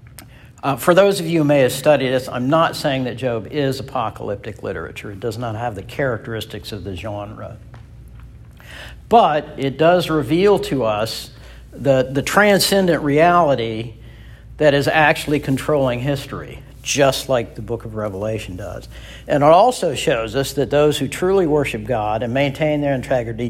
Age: 60-79